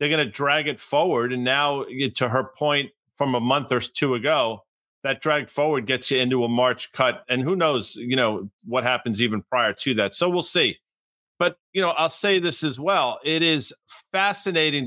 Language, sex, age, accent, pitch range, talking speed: English, male, 50-69, American, 125-145 Hz, 205 wpm